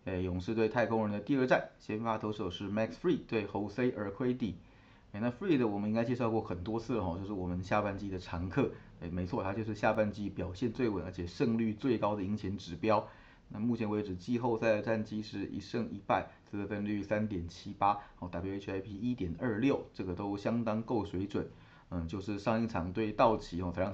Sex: male